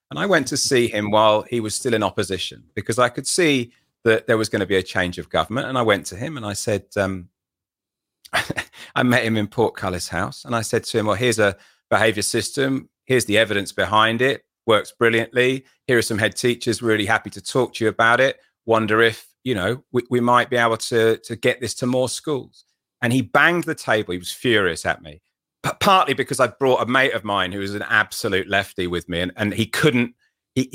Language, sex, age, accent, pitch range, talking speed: English, male, 40-59, British, 100-130 Hz, 230 wpm